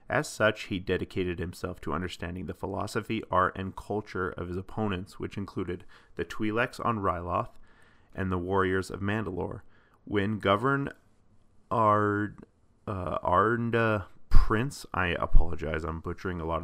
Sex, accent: male, American